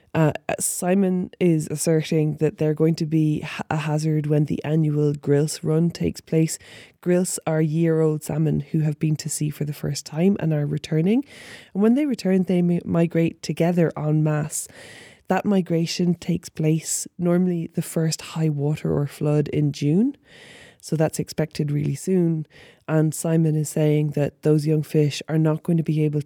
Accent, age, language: Irish, 20-39, English